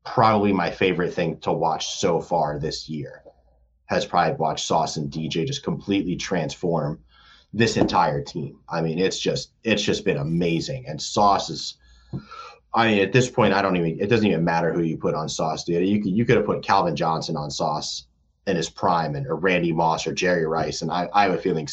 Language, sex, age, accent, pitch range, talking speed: English, male, 30-49, American, 80-115 Hz, 215 wpm